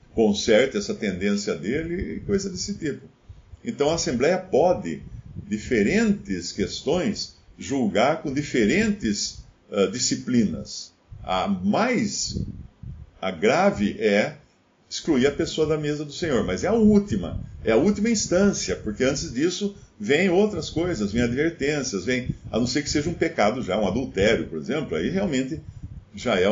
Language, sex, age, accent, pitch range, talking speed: Portuguese, male, 50-69, Brazilian, 120-200 Hz, 145 wpm